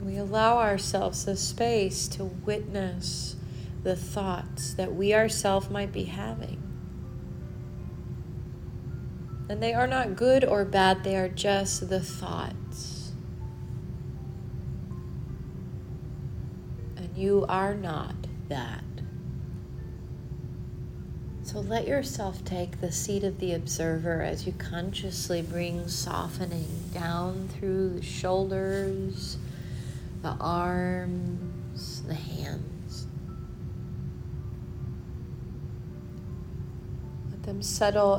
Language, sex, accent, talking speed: English, female, American, 90 wpm